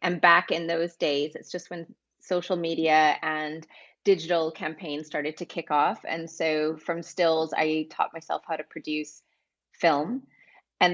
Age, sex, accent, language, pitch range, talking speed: 30-49, female, American, English, 160-185 Hz, 160 wpm